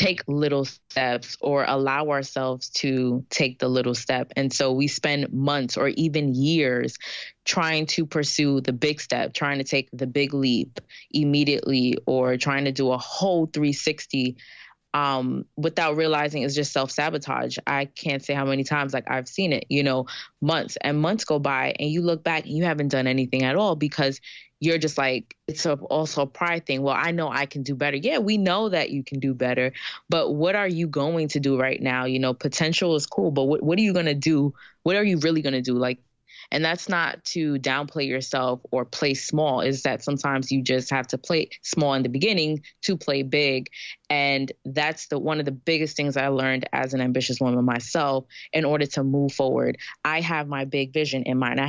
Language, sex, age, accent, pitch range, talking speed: English, female, 20-39, American, 130-155 Hz, 210 wpm